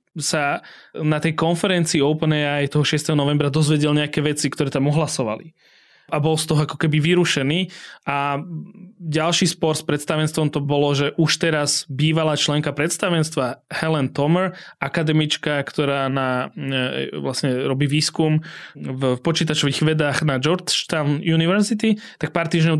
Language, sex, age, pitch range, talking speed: Slovak, male, 20-39, 145-170 Hz, 135 wpm